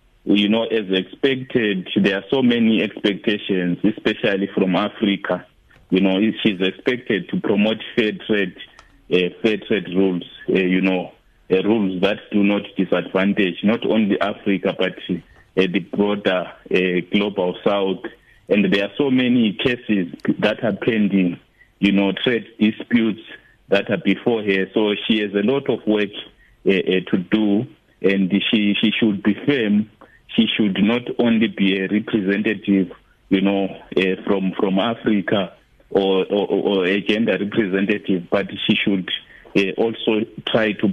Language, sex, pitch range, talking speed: English, male, 95-110 Hz, 150 wpm